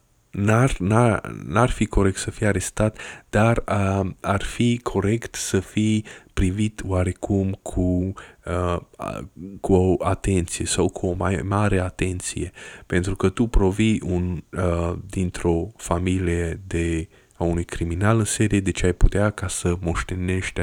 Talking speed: 140 wpm